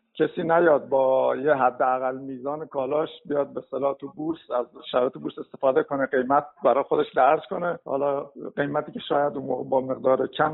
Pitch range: 140-160 Hz